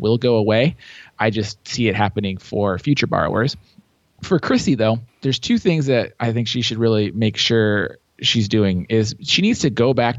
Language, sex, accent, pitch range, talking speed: English, male, American, 105-130 Hz, 195 wpm